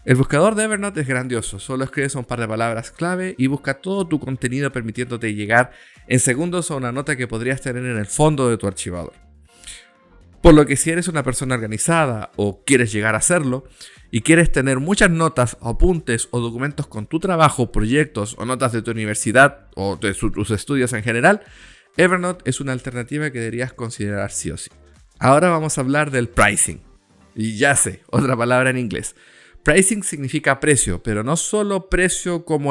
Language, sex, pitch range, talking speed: Spanish, male, 115-155 Hz, 185 wpm